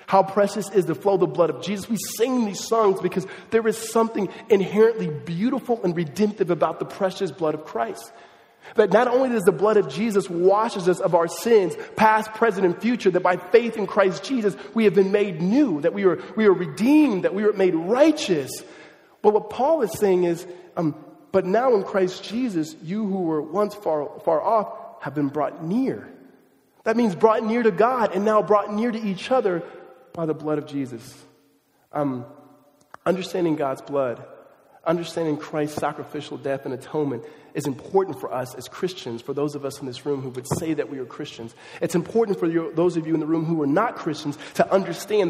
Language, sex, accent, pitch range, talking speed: English, male, American, 155-210 Hz, 200 wpm